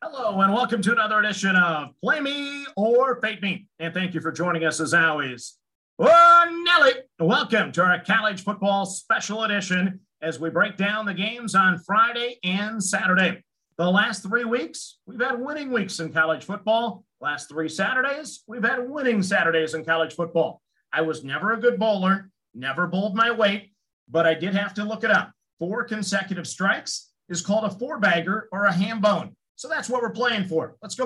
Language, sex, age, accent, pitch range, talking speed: English, male, 50-69, American, 175-225 Hz, 185 wpm